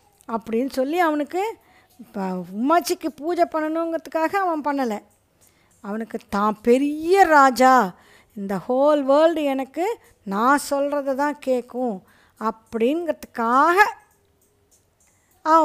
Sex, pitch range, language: female, 220-295 Hz, Tamil